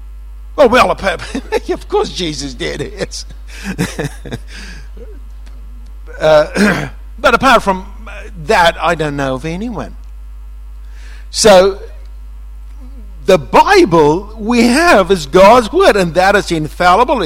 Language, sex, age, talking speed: English, male, 60-79, 95 wpm